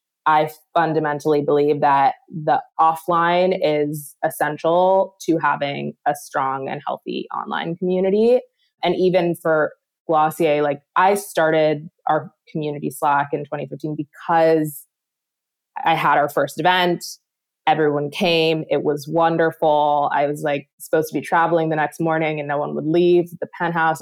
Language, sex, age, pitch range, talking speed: English, female, 20-39, 155-180 Hz, 140 wpm